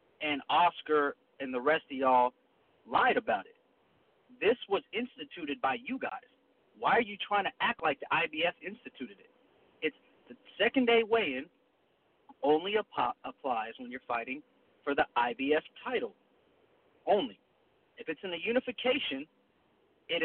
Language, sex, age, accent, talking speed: English, male, 40-59, American, 140 wpm